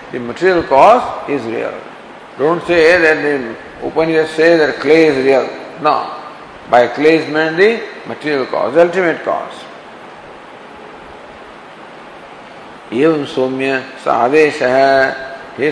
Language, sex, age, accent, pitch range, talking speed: English, male, 50-69, Indian, 135-165 Hz, 115 wpm